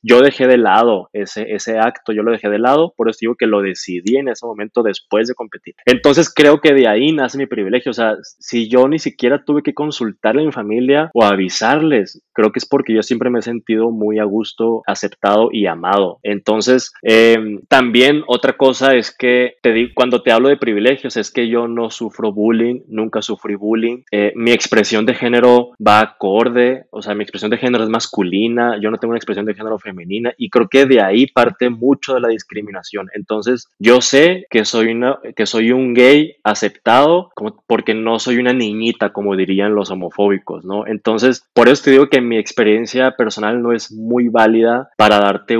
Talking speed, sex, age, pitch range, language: 200 wpm, male, 20-39, 105-125 Hz, Spanish